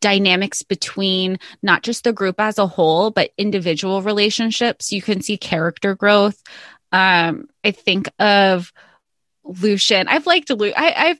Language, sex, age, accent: English, female, 20-39, American